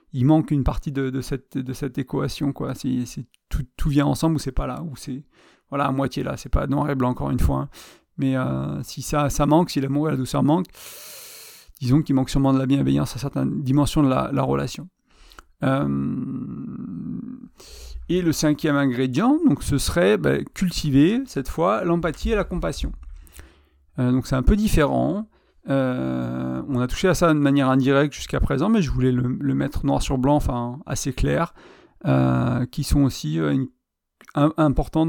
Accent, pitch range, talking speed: French, 125-150 Hz, 195 wpm